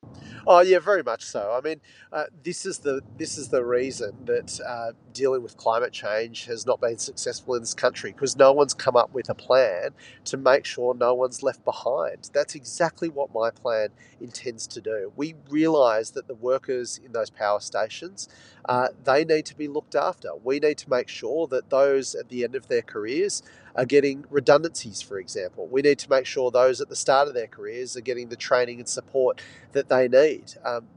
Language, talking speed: English, 205 wpm